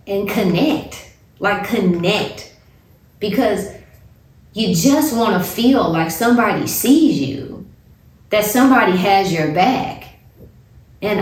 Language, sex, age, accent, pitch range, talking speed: English, female, 30-49, American, 165-205 Hz, 105 wpm